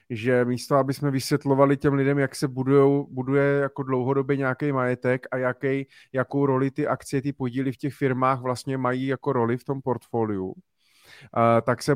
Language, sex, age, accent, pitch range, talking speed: Czech, male, 30-49, native, 135-150 Hz, 180 wpm